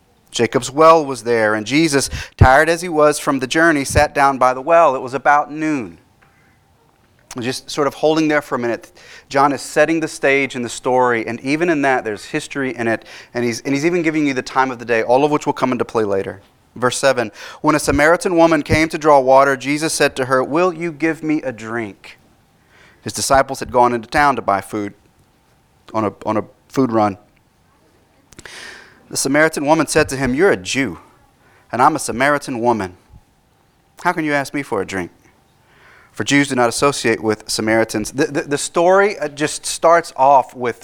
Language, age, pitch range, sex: English, 30-49, 120-150 Hz, male